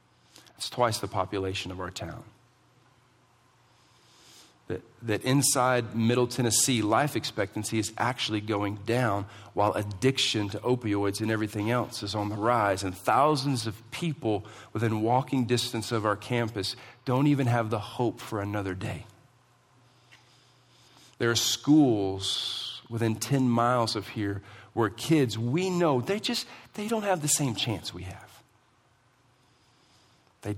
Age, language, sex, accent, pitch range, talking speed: 40-59, English, male, American, 105-130 Hz, 135 wpm